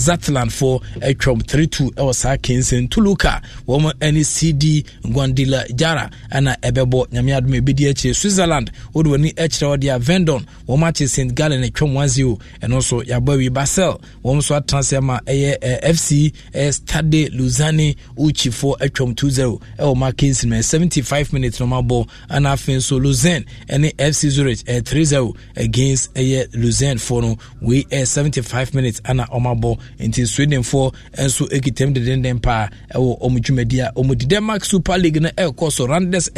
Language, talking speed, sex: English, 185 wpm, male